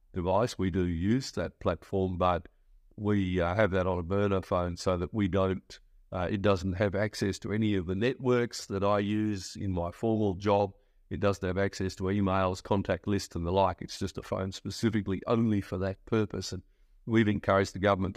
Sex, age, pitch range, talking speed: male, 50-69, 95-105 Hz, 200 wpm